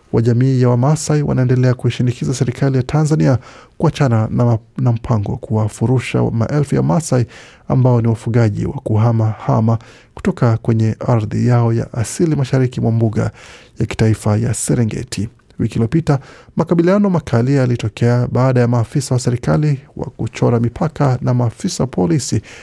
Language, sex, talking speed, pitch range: Swahili, male, 140 wpm, 115-135 Hz